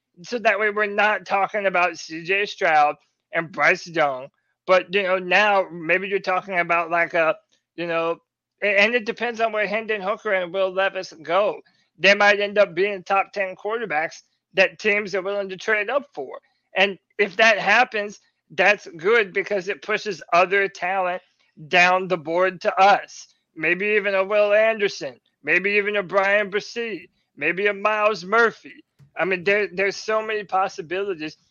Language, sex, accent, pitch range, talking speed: English, male, American, 180-210 Hz, 165 wpm